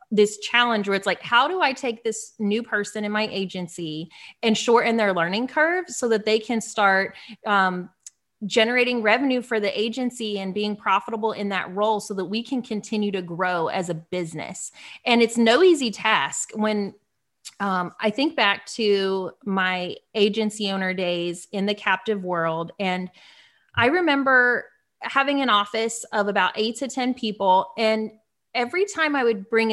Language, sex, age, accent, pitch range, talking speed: English, female, 30-49, American, 195-240 Hz, 170 wpm